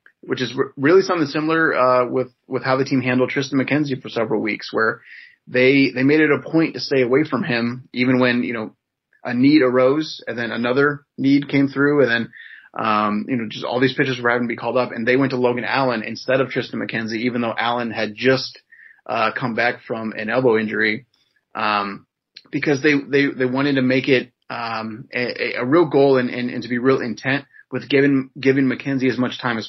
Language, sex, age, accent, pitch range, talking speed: English, male, 30-49, American, 115-135 Hz, 220 wpm